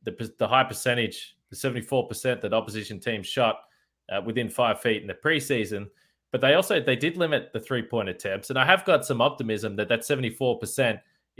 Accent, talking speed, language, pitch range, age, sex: Australian, 180 wpm, English, 105-135 Hz, 20-39, male